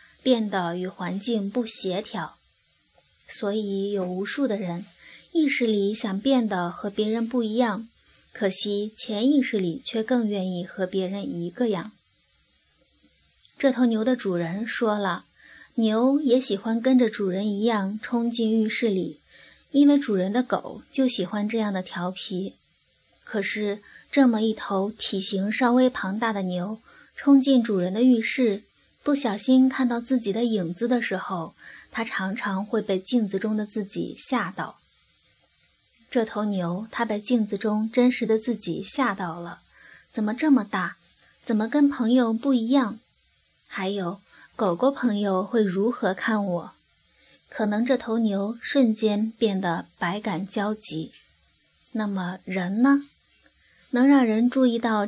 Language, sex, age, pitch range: Chinese, female, 20-39, 190-240 Hz